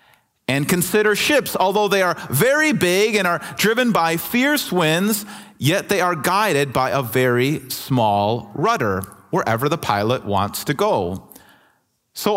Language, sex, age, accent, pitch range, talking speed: English, male, 40-59, American, 150-215 Hz, 145 wpm